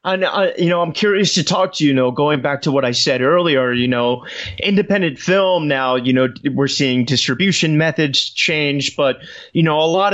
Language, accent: English, American